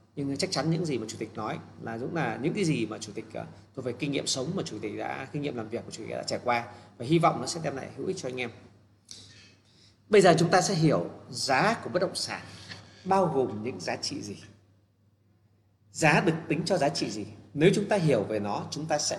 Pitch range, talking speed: 105-160 Hz, 255 wpm